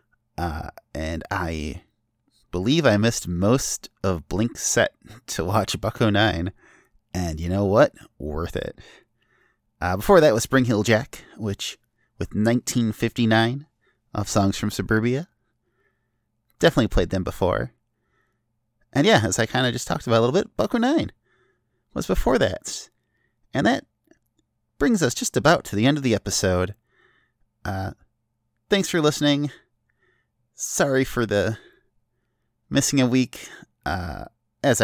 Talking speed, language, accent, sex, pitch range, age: 135 wpm, English, American, male, 100-120 Hz, 30-49